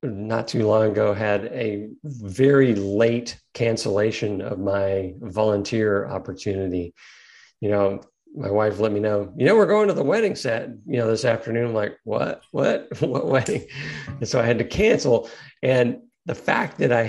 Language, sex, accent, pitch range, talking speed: English, male, American, 100-120 Hz, 170 wpm